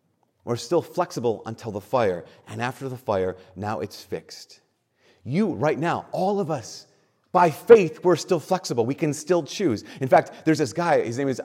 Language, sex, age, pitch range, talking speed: English, male, 30-49, 120-165 Hz, 190 wpm